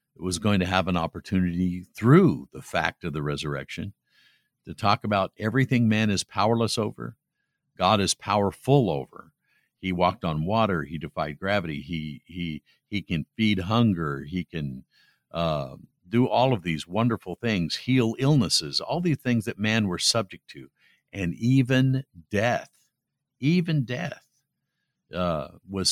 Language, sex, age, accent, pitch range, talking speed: English, male, 50-69, American, 85-115 Hz, 150 wpm